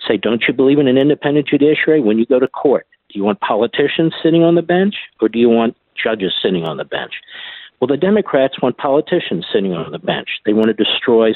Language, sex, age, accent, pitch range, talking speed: English, male, 50-69, American, 115-165 Hz, 225 wpm